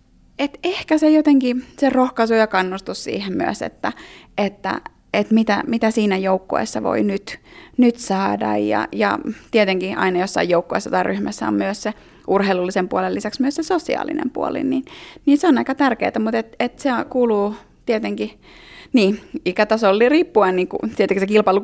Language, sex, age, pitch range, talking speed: Finnish, female, 30-49, 195-250 Hz, 160 wpm